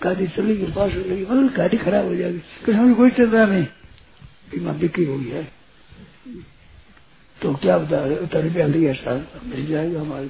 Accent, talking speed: native, 70 wpm